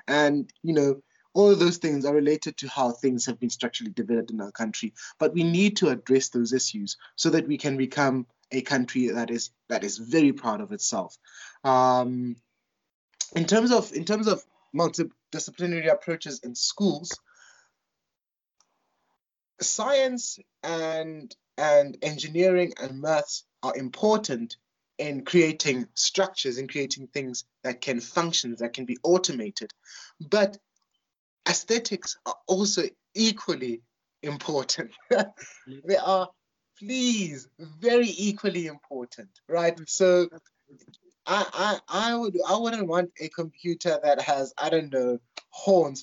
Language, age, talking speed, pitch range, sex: English, 20-39, 135 wpm, 130-185 Hz, male